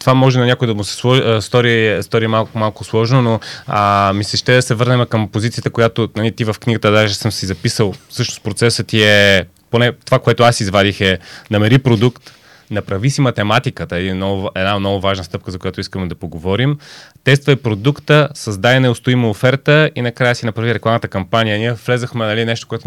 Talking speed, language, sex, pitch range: 190 wpm, Bulgarian, male, 110-140 Hz